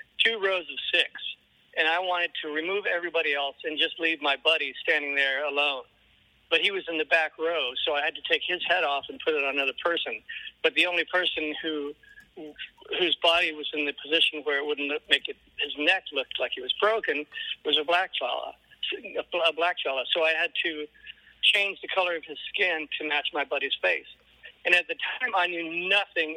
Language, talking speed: English, 215 wpm